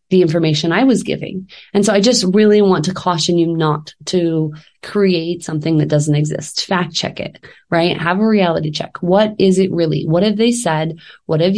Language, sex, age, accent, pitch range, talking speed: English, female, 20-39, American, 165-200 Hz, 200 wpm